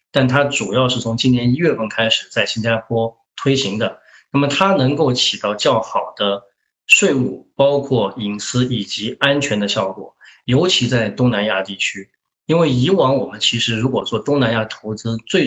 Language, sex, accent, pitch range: Chinese, male, native, 110-140 Hz